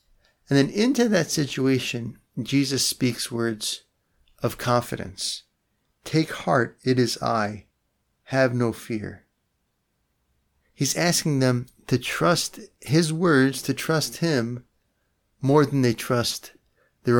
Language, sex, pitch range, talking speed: English, male, 110-135 Hz, 115 wpm